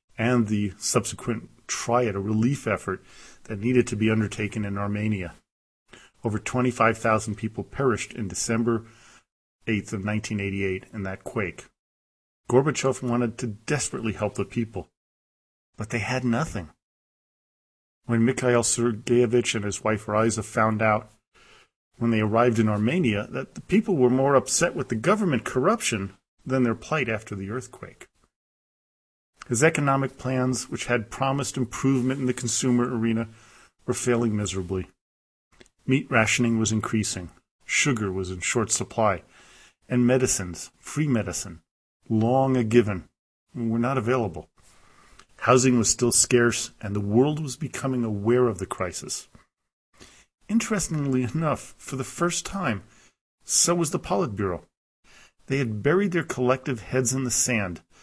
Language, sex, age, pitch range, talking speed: English, male, 40-59, 105-130 Hz, 135 wpm